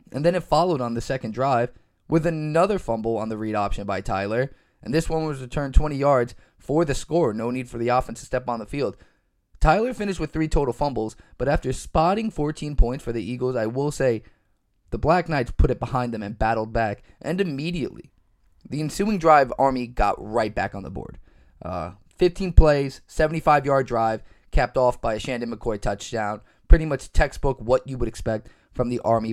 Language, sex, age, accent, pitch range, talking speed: English, male, 20-39, American, 110-150 Hz, 200 wpm